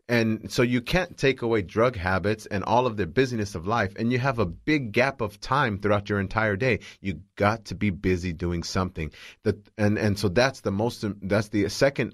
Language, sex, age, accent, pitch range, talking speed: English, male, 30-49, American, 95-120 Hz, 215 wpm